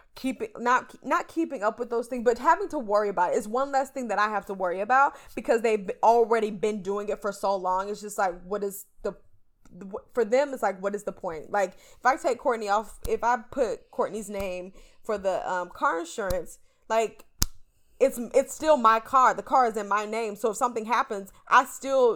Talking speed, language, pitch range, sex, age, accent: 220 wpm, English, 200-260 Hz, female, 20-39, American